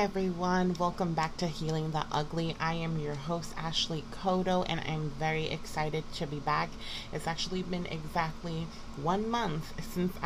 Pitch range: 150-180 Hz